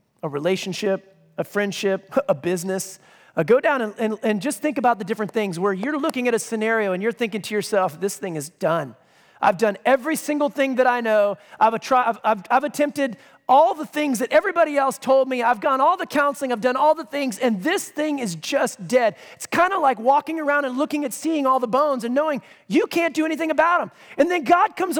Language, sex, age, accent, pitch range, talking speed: English, male, 30-49, American, 240-330 Hz, 225 wpm